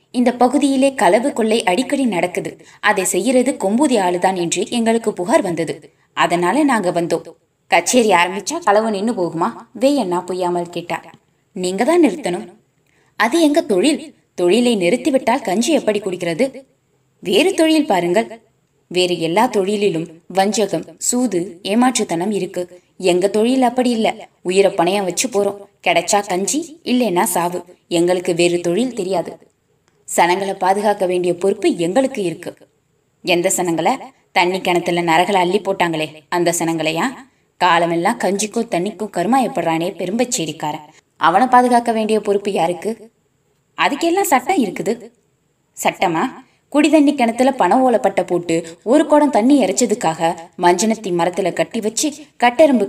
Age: 20-39